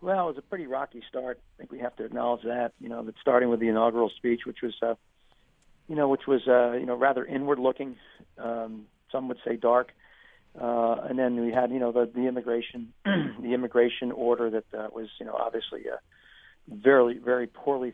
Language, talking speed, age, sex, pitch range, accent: English, 210 wpm, 40-59, male, 115-135 Hz, American